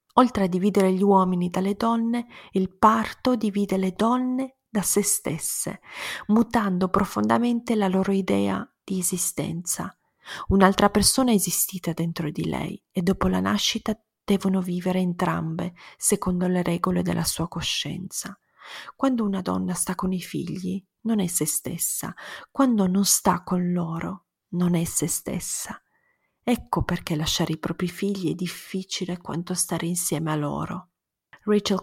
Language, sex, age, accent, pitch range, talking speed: Italian, female, 30-49, native, 170-200 Hz, 145 wpm